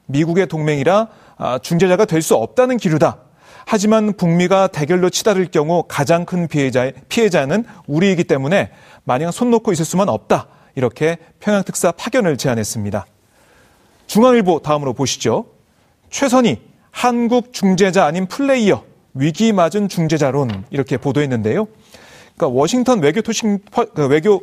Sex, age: male, 30-49